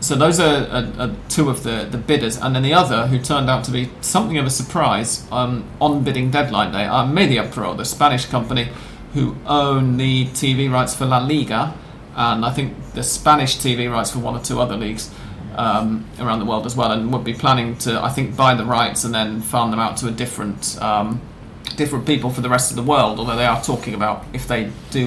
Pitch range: 115-135 Hz